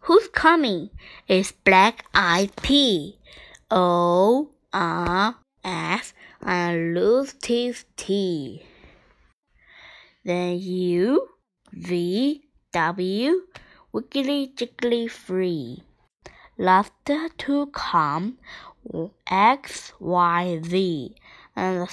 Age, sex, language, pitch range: 20-39, female, Chinese, 185-250 Hz